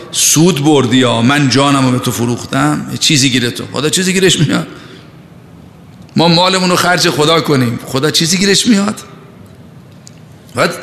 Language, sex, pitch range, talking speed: Persian, male, 135-175 Hz, 150 wpm